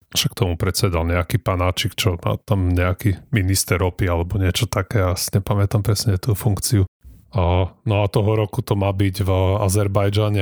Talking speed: 165 wpm